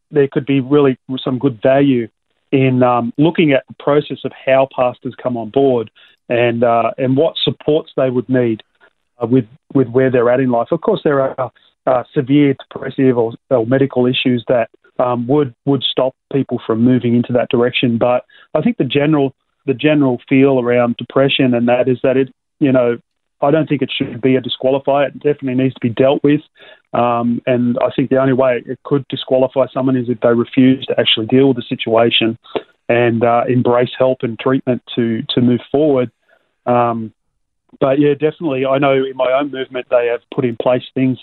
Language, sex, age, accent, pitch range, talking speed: English, male, 30-49, Australian, 120-135 Hz, 200 wpm